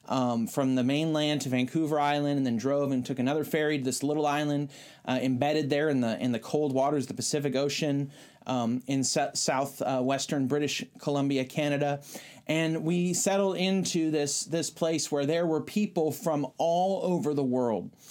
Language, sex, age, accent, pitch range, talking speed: English, male, 30-49, American, 135-170 Hz, 180 wpm